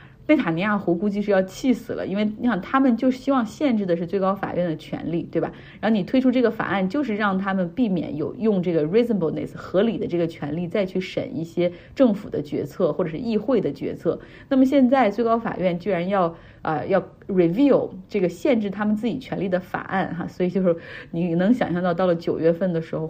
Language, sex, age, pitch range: Chinese, female, 30-49, 170-210 Hz